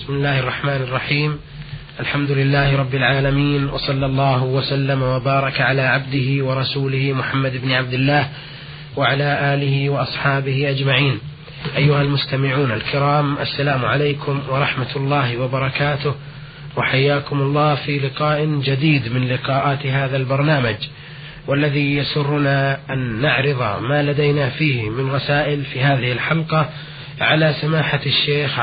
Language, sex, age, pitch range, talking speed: Arabic, male, 30-49, 135-145 Hz, 115 wpm